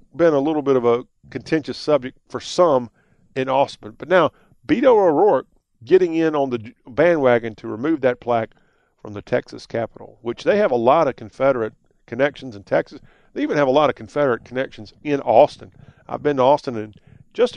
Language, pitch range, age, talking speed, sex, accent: English, 115-145 Hz, 40-59, 190 wpm, male, American